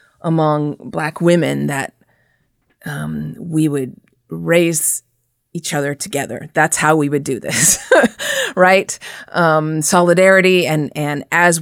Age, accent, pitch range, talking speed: 30-49, American, 145-185 Hz, 120 wpm